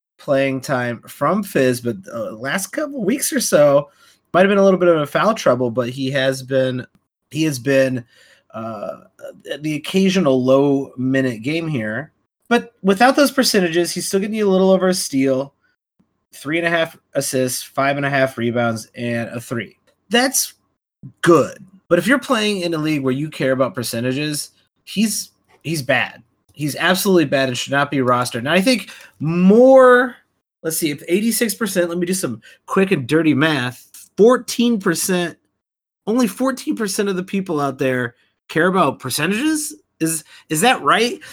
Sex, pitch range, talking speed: male, 135-190 Hz, 175 wpm